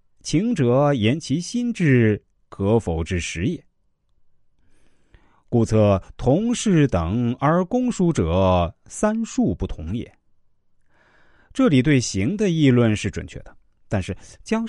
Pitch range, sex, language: 90-135 Hz, male, Chinese